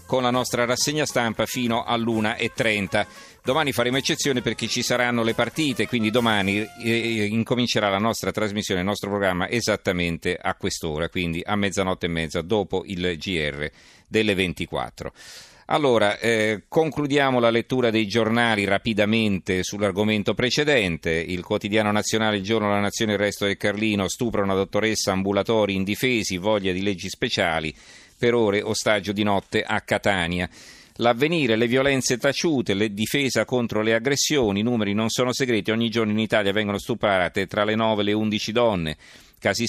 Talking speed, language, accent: 155 wpm, Italian, native